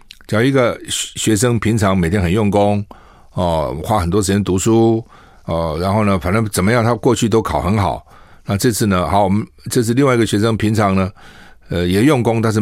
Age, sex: 50-69, male